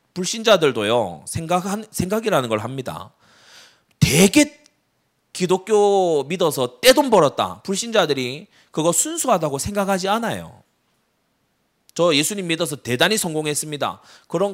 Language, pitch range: Korean, 125-190 Hz